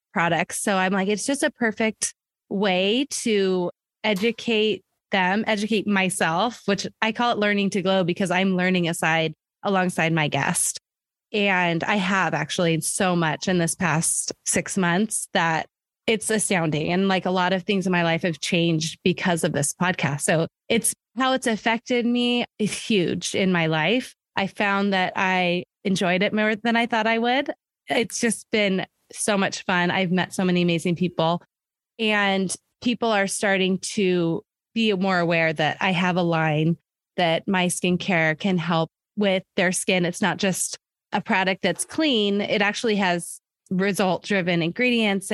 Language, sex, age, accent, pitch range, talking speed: English, female, 20-39, American, 175-210 Hz, 165 wpm